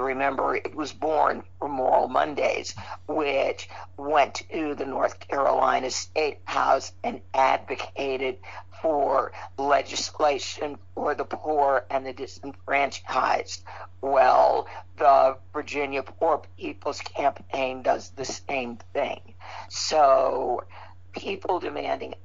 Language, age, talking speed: English, 50-69, 105 wpm